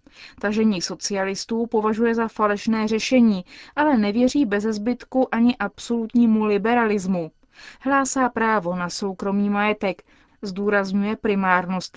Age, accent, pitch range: 20-39, native, 190-230 Hz